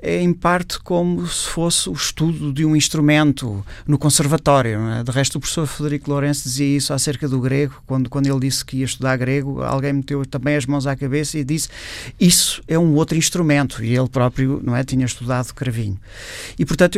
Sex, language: male, Portuguese